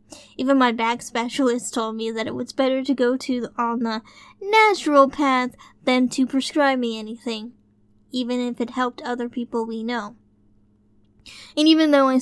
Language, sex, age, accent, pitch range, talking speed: English, female, 10-29, American, 225-260 Hz, 170 wpm